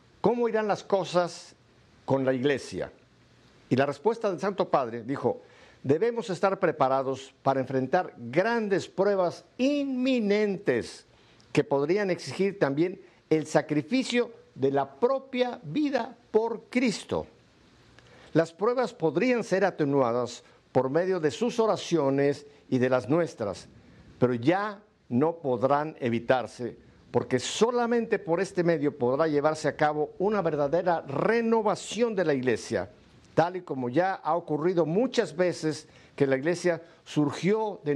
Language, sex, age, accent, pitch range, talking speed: Spanish, male, 50-69, Mexican, 135-210 Hz, 130 wpm